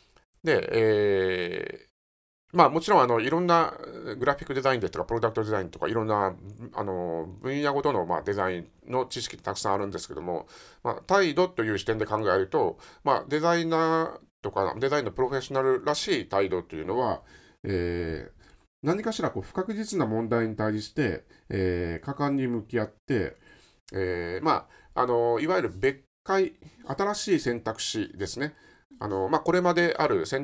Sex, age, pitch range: male, 50-69, 105-175 Hz